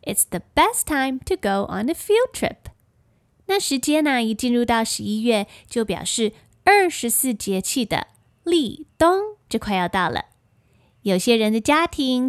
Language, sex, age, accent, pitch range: Chinese, female, 20-39, American, 205-290 Hz